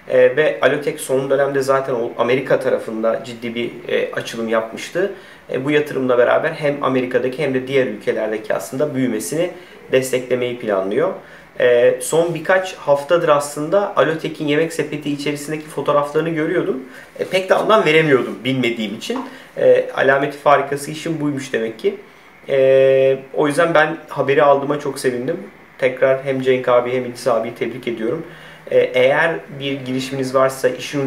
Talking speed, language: 140 wpm, Turkish